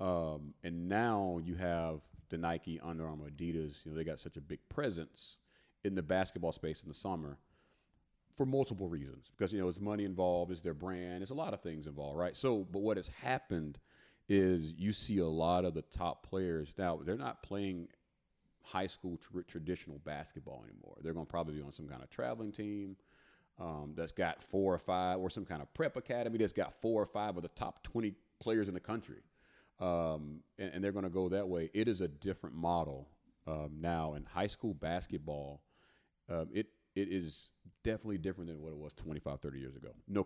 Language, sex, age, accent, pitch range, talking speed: English, male, 30-49, American, 80-100 Hz, 210 wpm